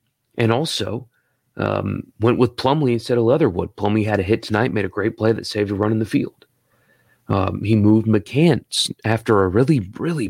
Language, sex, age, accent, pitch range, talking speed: English, male, 30-49, American, 100-125 Hz, 190 wpm